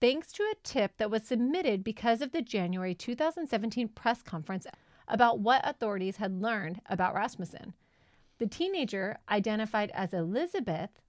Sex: female